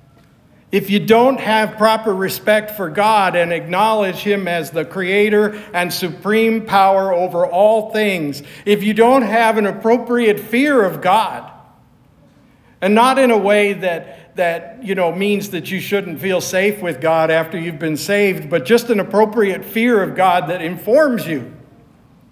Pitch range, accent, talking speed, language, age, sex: 170-205 Hz, American, 160 wpm, English, 60-79, male